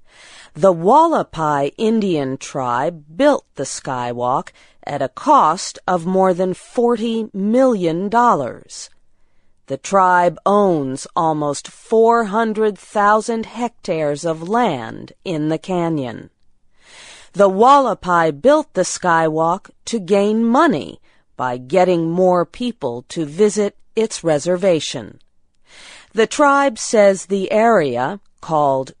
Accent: American